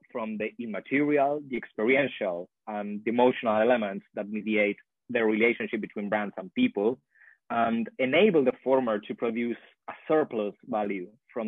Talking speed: 140 wpm